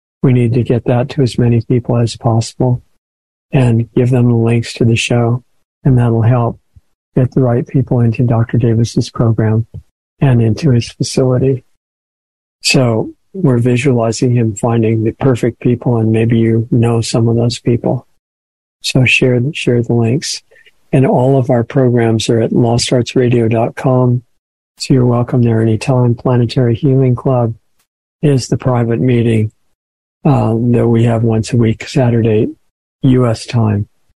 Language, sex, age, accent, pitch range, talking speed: English, male, 50-69, American, 115-130 Hz, 150 wpm